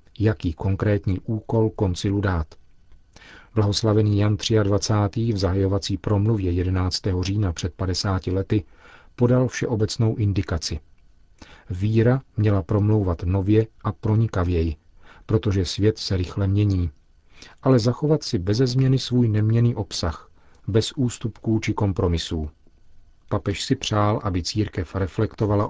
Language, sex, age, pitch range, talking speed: Czech, male, 40-59, 95-110 Hz, 110 wpm